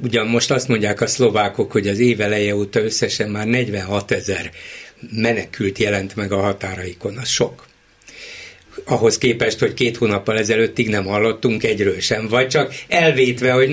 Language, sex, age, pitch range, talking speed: Hungarian, male, 60-79, 110-145 Hz, 155 wpm